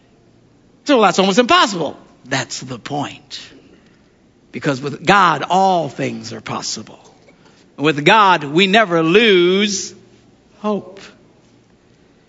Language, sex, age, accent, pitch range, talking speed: English, male, 60-79, American, 150-195 Hz, 100 wpm